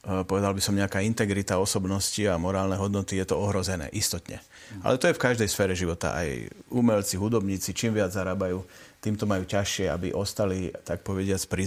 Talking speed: 175 wpm